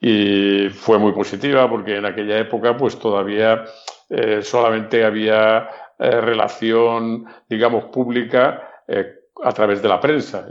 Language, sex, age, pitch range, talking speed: Spanish, male, 50-69, 105-120 Hz, 130 wpm